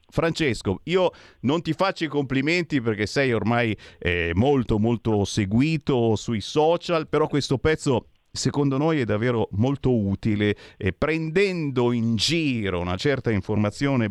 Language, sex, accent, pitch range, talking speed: Italian, male, native, 105-155 Hz, 135 wpm